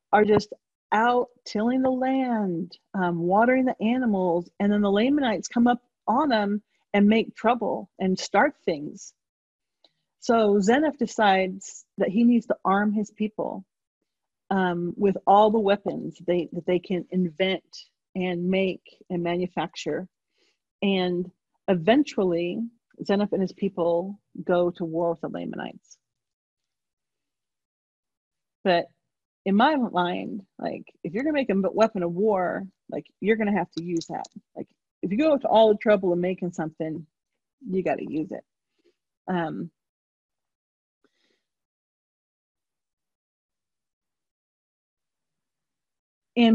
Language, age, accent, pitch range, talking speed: English, 40-59, American, 180-225 Hz, 130 wpm